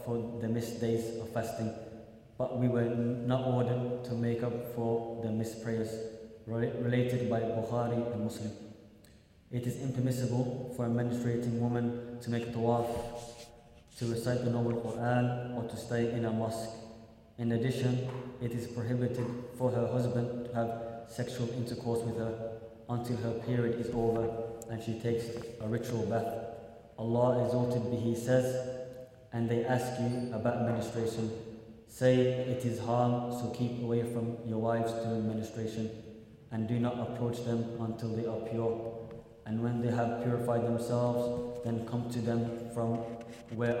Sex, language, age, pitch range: male, English, 20-39, 115-120 Hz